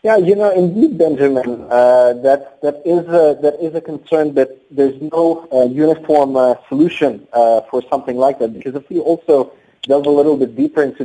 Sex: male